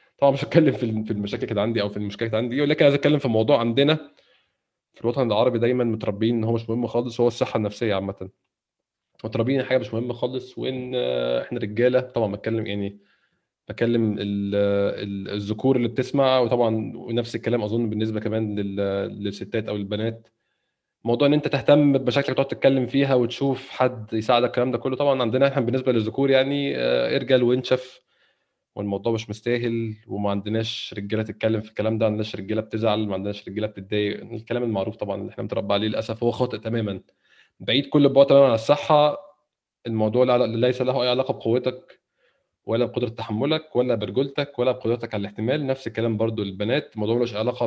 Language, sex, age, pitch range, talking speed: Arabic, male, 20-39, 110-130 Hz, 175 wpm